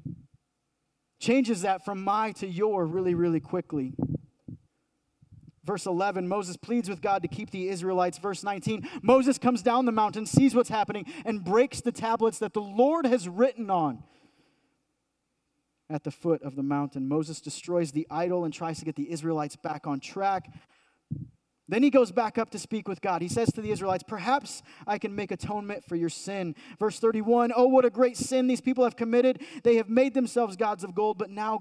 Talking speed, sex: 190 wpm, male